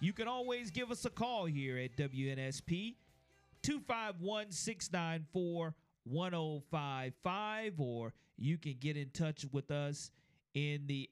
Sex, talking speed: male, 115 wpm